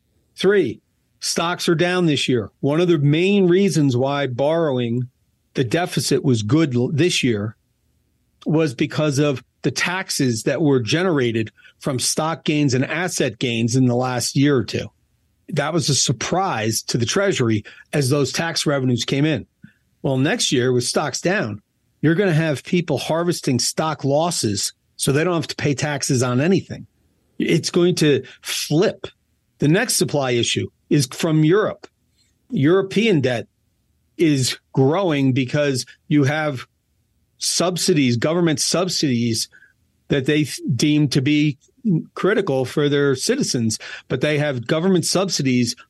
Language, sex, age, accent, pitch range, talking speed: English, male, 40-59, American, 125-165 Hz, 145 wpm